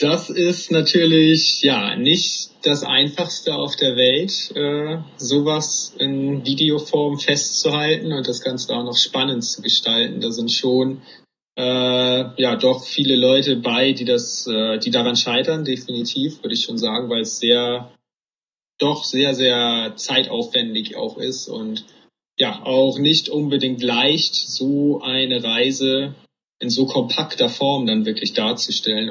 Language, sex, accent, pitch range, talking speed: German, male, German, 120-145 Hz, 140 wpm